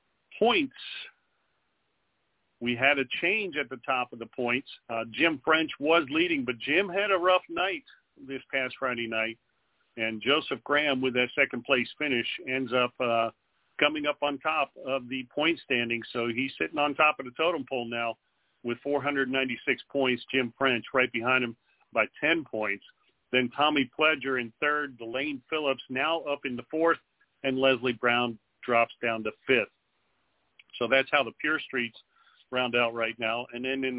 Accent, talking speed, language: American, 170 wpm, English